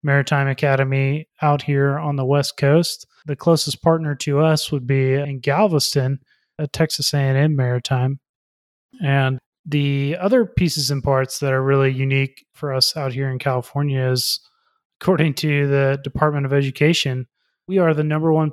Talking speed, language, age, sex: 160 wpm, English, 20-39, male